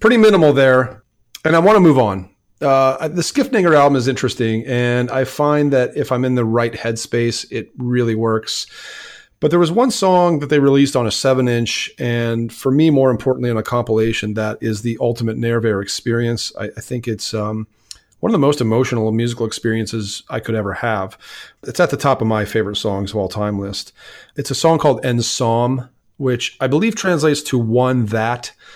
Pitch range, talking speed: 110-130 Hz, 195 wpm